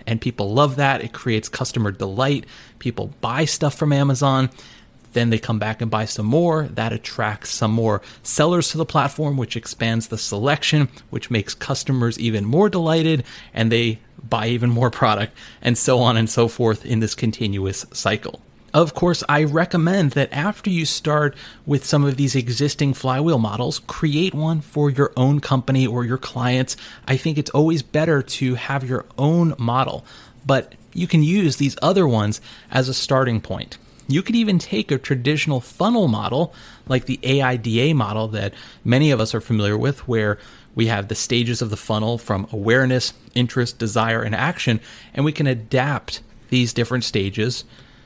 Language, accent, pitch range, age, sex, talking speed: English, American, 115-145 Hz, 30-49, male, 175 wpm